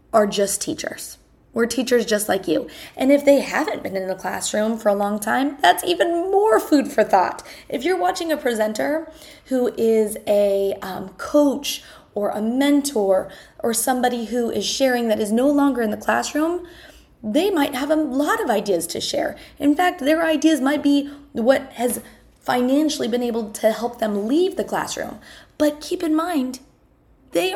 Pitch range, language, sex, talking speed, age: 210-300 Hz, English, female, 180 wpm, 20-39